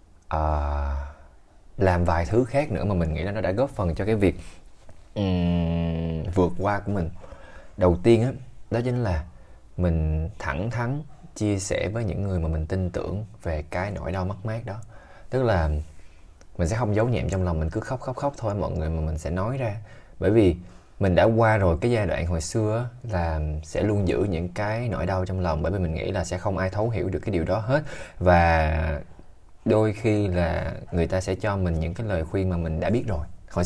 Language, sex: Vietnamese, male